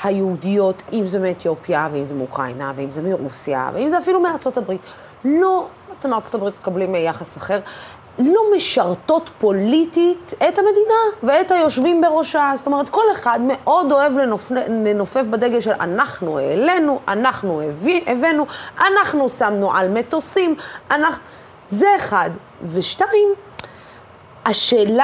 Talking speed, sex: 125 wpm, female